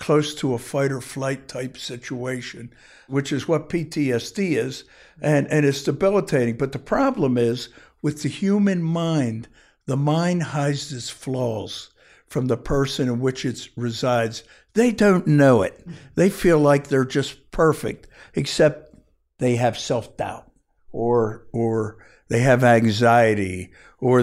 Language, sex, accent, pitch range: English, male, American, 120-145 Hz